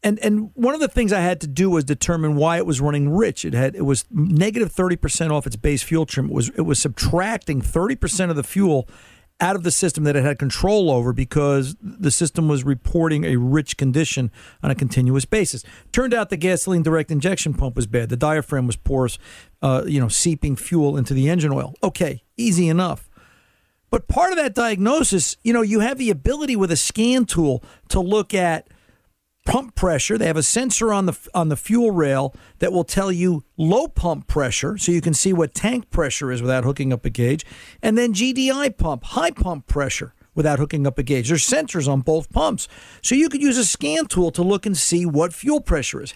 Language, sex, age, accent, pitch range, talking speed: English, male, 50-69, American, 135-195 Hz, 215 wpm